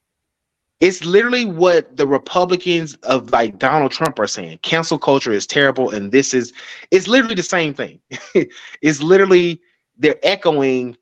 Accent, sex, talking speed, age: American, male, 145 wpm, 30-49